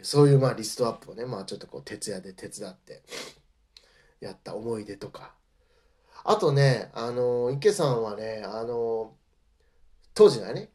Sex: male